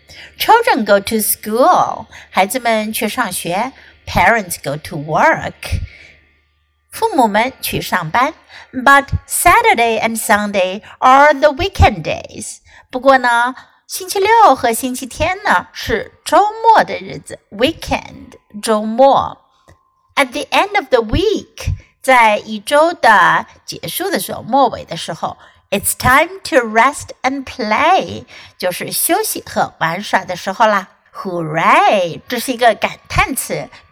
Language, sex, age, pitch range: Chinese, female, 60-79, 210-290 Hz